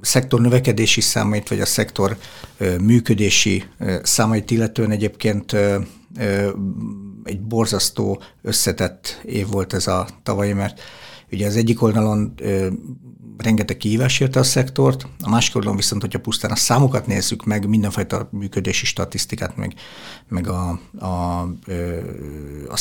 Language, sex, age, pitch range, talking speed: Hungarian, male, 60-79, 95-110 Hz, 135 wpm